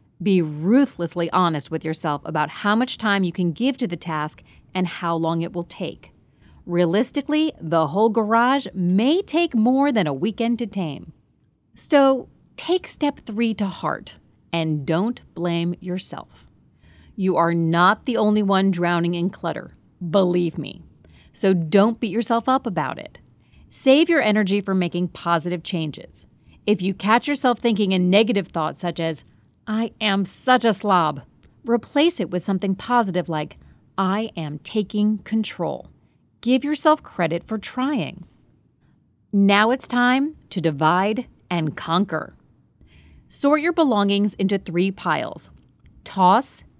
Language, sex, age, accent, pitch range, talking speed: English, female, 40-59, American, 170-235 Hz, 145 wpm